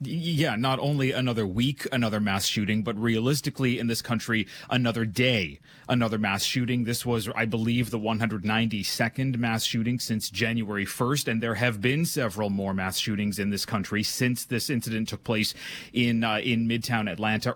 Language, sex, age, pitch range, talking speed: English, male, 30-49, 110-130 Hz, 170 wpm